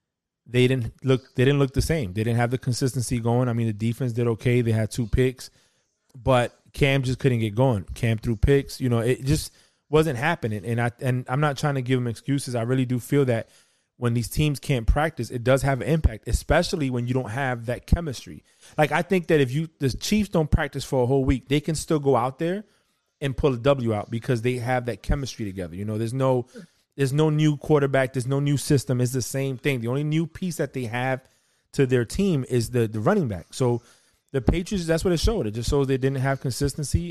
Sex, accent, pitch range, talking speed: male, American, 115-140 Hz, 240 wpm